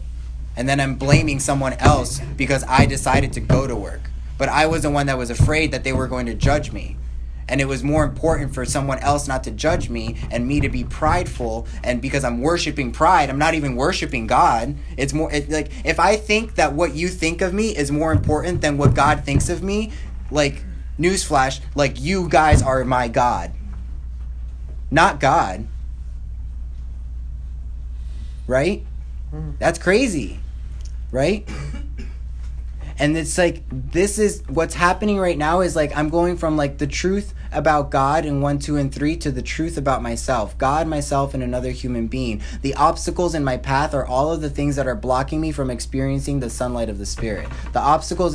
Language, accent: English, American